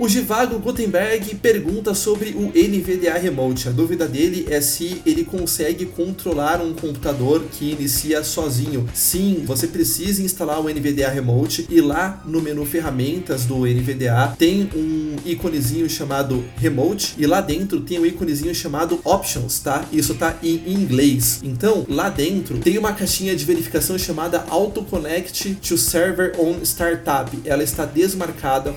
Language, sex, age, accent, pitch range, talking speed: Portuguese, male, 30-49, Brazilian, 145-180 Hz, 150 wpm